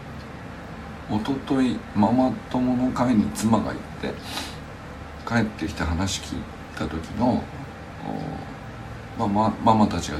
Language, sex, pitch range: Japanese, male, 85-115 Hz